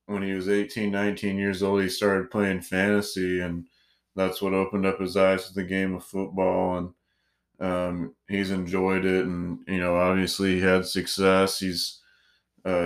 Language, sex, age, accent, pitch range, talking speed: English, male, 30-49, American, 95-100 Hz, 175 wpm